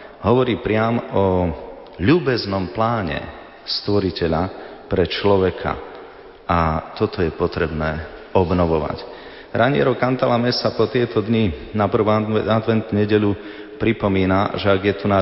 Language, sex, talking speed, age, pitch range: Slovak, male, 115 wpm, 30-49, 90-105 Hz